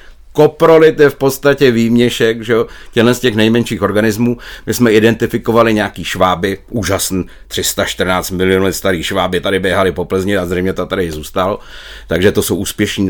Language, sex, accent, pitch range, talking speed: Czech, male, native, 100-130 Hz, 160 wpm